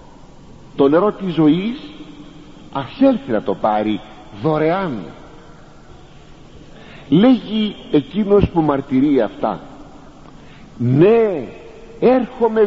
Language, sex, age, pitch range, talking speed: Greek, male, 50-69, 125-195 Hz, 75 wpm